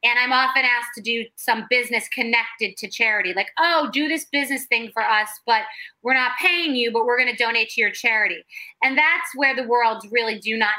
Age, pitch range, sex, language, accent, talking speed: 30-49, 220-270 Hz, female, English, American, 220 wpm